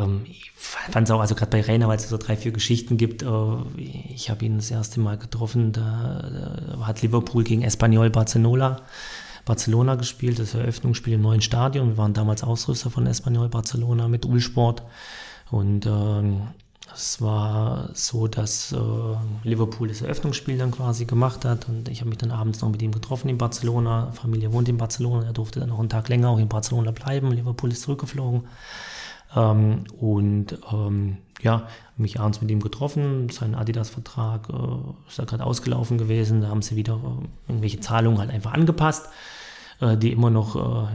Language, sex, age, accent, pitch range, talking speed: German, male, 30-49, German, 110-120 Hz, 175 wpm